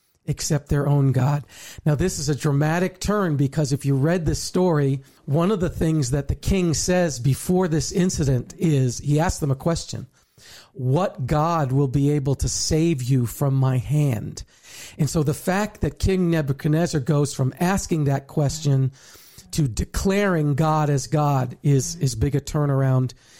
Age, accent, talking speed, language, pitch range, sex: 40-59, American, 170 wpm, English, 135-170 Hz, male